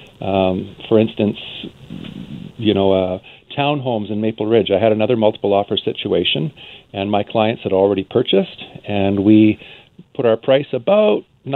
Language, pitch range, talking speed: English, 100-125 Hz, 145 wpm